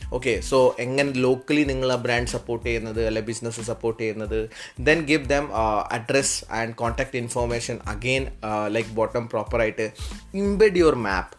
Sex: male